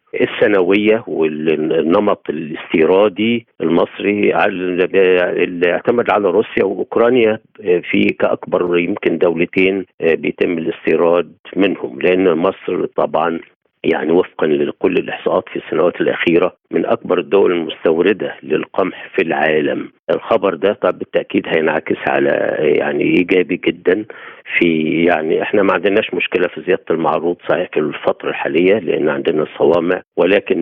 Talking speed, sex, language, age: 120 wpm, male, Arabic, 50-69